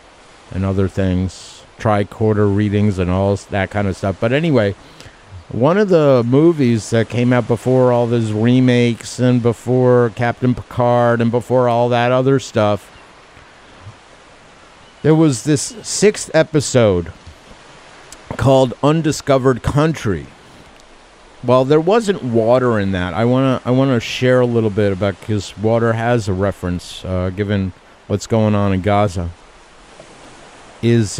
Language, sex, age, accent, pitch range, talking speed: English, male, 50-69, American, 100-135 Hz, 135 wpm